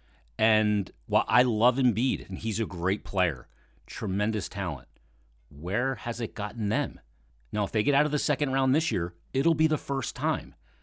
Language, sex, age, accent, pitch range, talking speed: English, male, 40-59, American, 80-125 Hz, 185 wpm